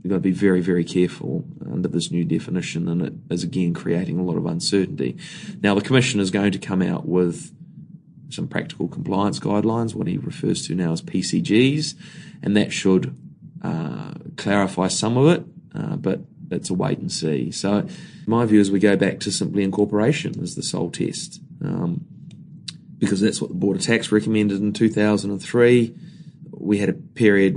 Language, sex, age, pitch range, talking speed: English, male, 20-39, 95-145 Hz, 180 wpm